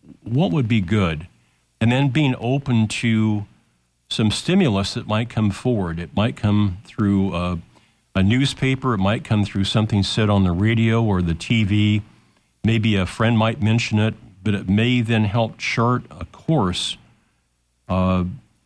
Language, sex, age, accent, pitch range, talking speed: English, male, 50-69, American, 95-115 Hz, 160 wpm